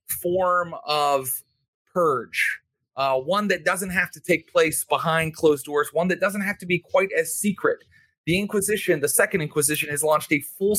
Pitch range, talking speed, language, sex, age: 140-175 Hz, 180 wpm, English, male, 30-49